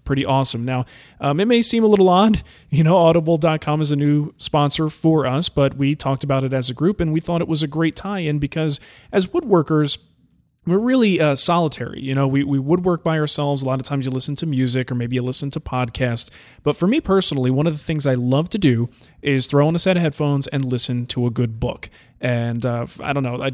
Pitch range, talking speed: 130-160 Hz, 240 wpm